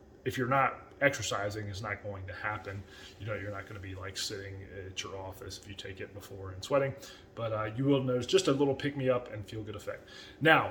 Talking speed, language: 230 wpm, English